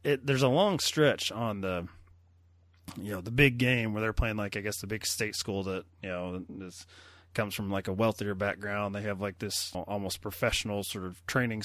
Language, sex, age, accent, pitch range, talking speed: English, male, 30-49, American, 95-120 Hz, 210 wpm